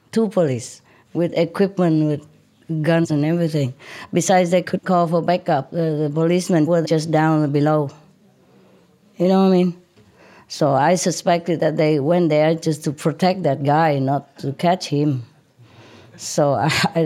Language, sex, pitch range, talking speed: English, female, 145-180 Hz, 160 wpm